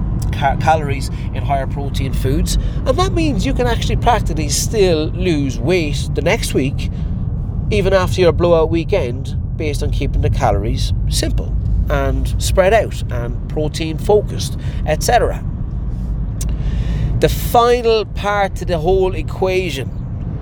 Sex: male